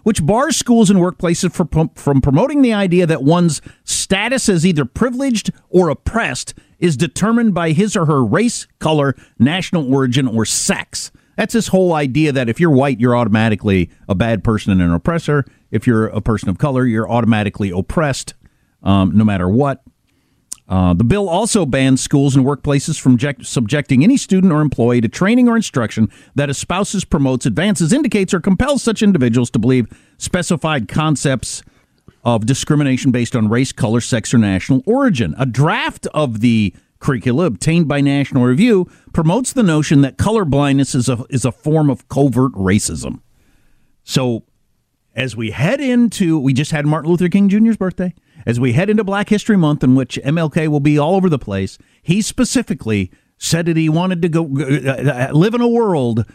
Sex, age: male, 50-69